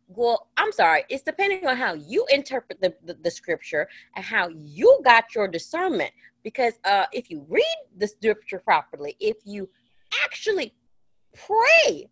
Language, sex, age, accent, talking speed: English, female, 30-49, American, 155 wpm